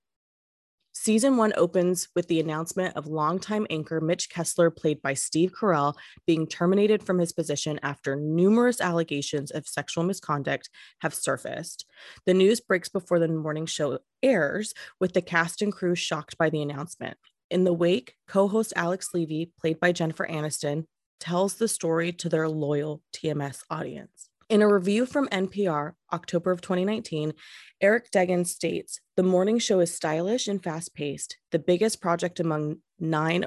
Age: 20-39